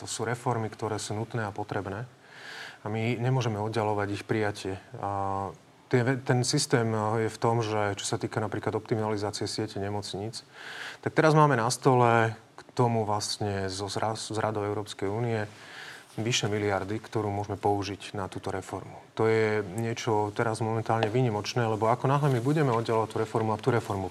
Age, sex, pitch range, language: 30-49, male, 110-130 Hz, Slovak